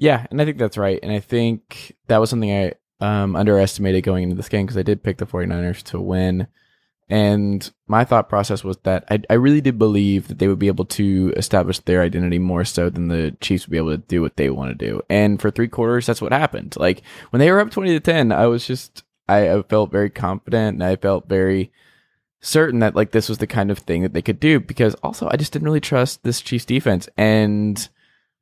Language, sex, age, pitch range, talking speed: English, male, 20-39, 95-120 Hz, 240 wpm